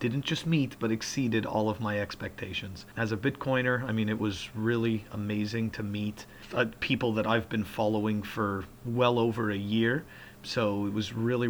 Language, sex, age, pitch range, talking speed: English, male, 40-59, 105-130 Hz, 185 wpm